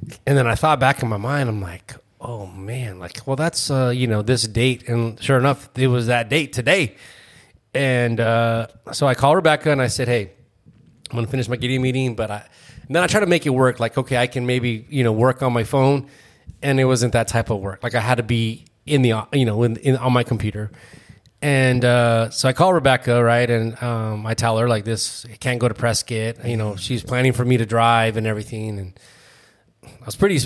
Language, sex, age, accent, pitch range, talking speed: English, male, 30-49, American, 115-130 Hz, 235 wpm